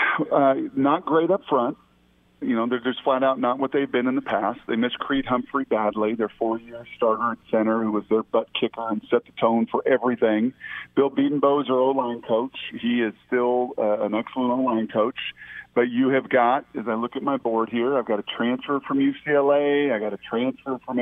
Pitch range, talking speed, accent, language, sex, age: 120-150 Hz, 215 wpm, American, English, male, 50-69